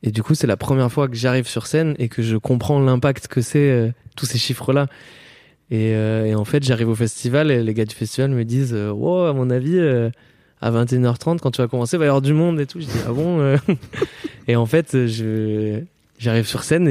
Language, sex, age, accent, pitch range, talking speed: French, male, 20-39, French, 115-140 Hz, 225 wpm